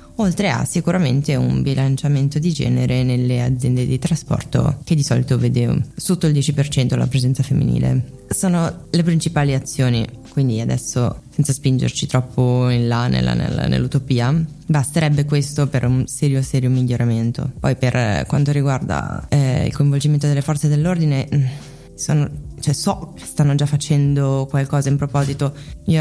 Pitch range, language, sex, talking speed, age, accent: 130-150 Hz, Italian, female, 140 wpm, 20-39, native